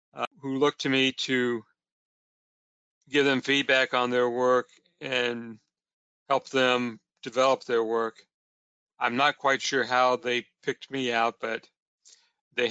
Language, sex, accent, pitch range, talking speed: English, male, American, 115-130 Hz, 130 wpm